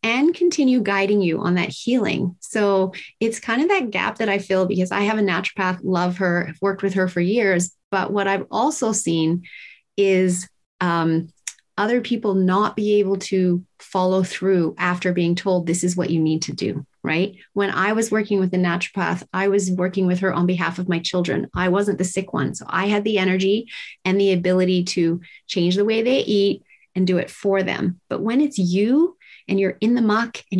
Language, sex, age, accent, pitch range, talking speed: English, female, 30-49, American, 180-220 Hz, 210 wpm